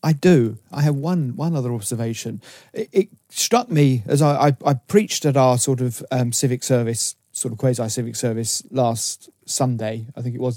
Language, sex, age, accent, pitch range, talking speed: English, male, 40-59, British, 125-160 Hz, 200 wpm